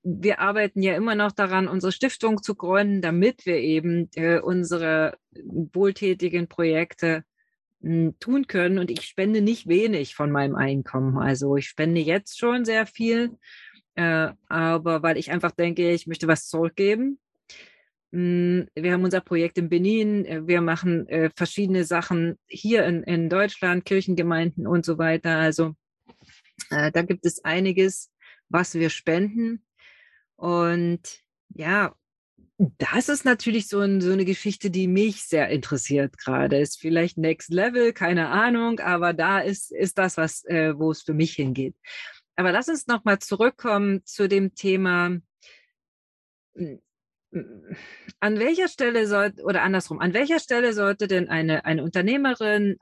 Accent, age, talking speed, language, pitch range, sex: German, 30-49, 135 wpm, German, 165-205 Hz, female